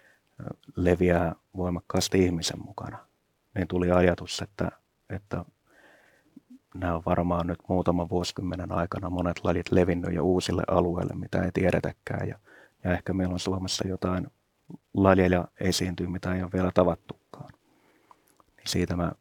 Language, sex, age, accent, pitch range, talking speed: Finnish, male, 30-49, native, 85-95 Hz, 130 wpm